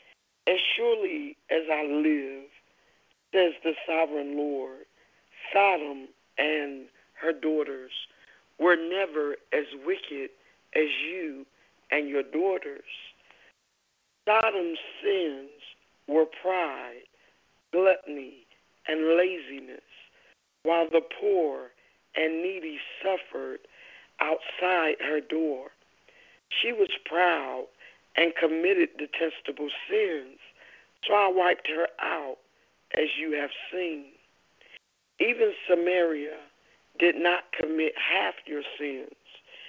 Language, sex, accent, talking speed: English, male, American, 95 wpm